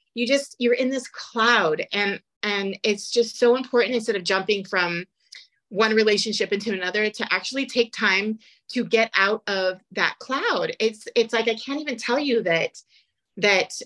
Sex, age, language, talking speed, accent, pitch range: female, 30-49, English, 175 wpm, American, 195-240 Hz